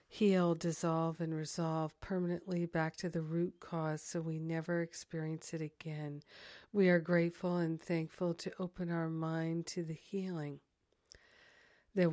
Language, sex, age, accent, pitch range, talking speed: English, female, 50-69, American, 160-175 Hz, 145 wpm